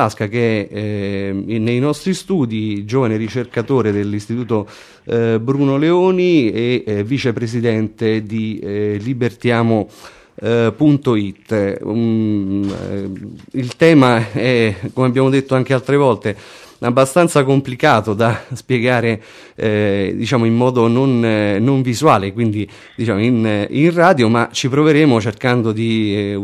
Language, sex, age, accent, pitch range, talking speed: Italian, male, 30-49, native, 105-125 Hz, 115 wpm